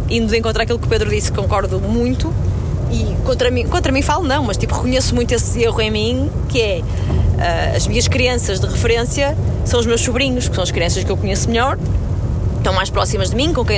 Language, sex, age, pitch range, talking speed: Portuguese, female, 20-39, 95-115 Hz, 225 wpm